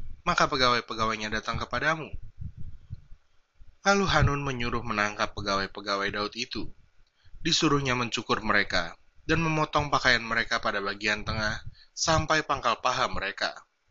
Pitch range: 105-140 Hz